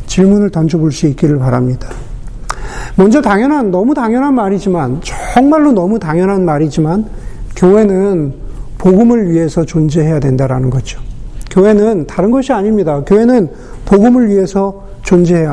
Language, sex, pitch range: Korean, male, 170-225 Hz